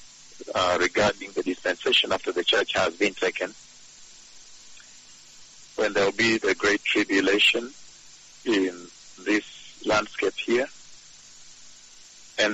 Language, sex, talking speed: English, male, 105 wpm